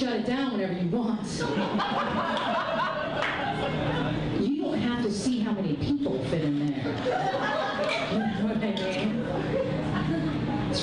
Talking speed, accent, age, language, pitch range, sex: 100 wpm, American, 40-59, English, 160-250 Hz, female